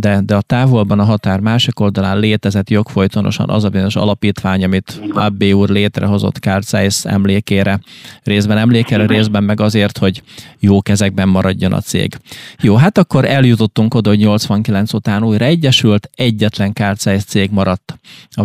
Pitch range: 100-115 Hz